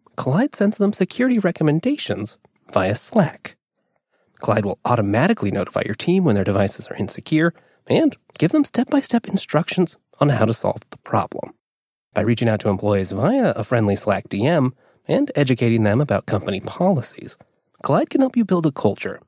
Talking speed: 160 wpm